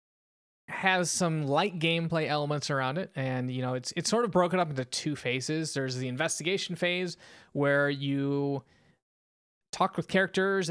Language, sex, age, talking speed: English, male, 20-39, 155 wpm